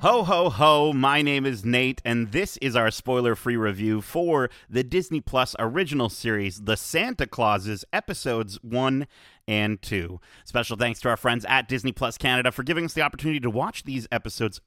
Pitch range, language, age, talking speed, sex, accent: 105-145 Hz, English, 30-49, 180 wpm, male, American